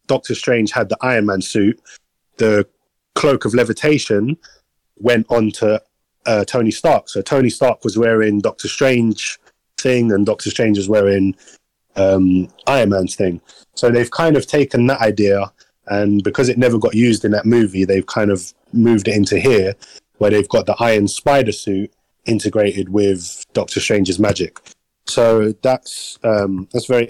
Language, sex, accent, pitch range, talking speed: English, male, British, 105-120 Hz, 165 wpm